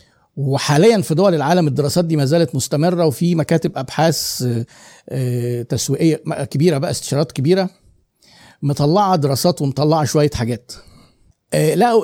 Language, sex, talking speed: Arabic, male, 110 wpm